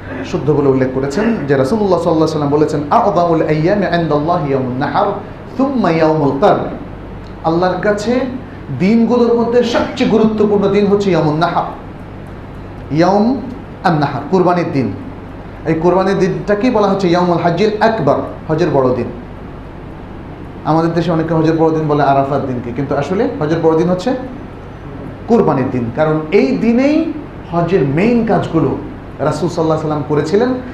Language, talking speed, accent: Bengali, 65 wpm, native